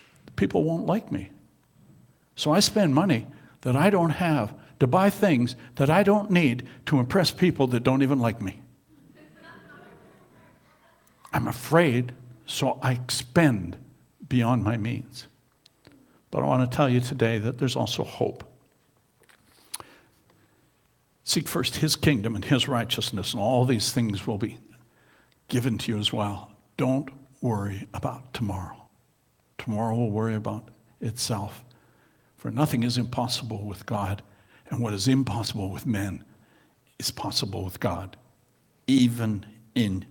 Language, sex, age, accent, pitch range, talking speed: English, male, 60-79, American, 115-145 Hz, 135 wpm